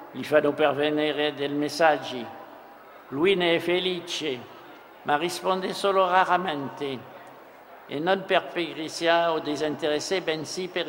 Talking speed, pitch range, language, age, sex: 115 wpm, 150-180 Hz, Italian, 60-79, male